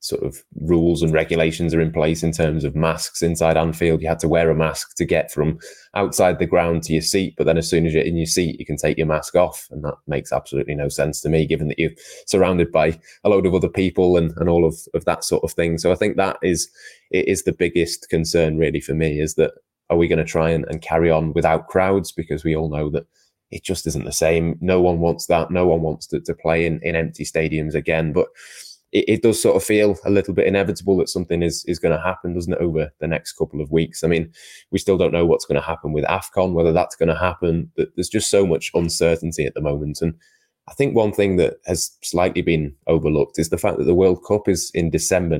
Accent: British